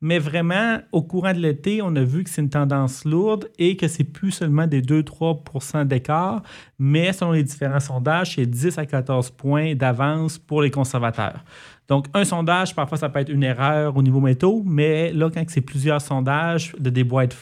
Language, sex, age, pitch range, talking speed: French, male, 30-49, 130-160 Hz, 195 wpm